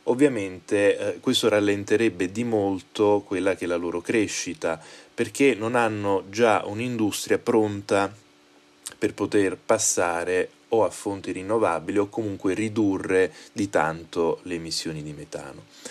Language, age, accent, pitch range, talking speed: Italian, 20-39, native, 95-120 Hz, 130 wpm